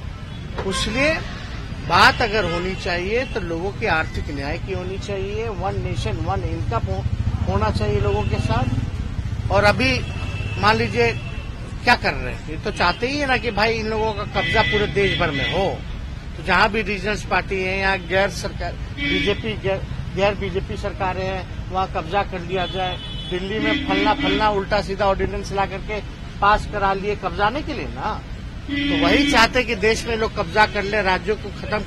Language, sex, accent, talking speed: Hindi, male, native, 175 wpm